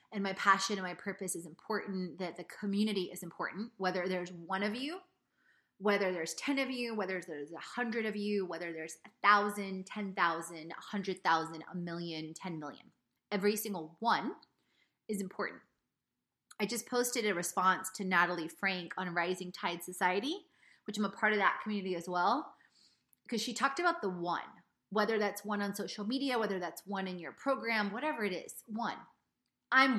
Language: English